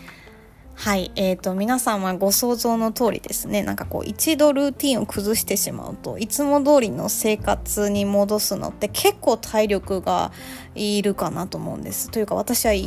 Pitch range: 190-230 Hz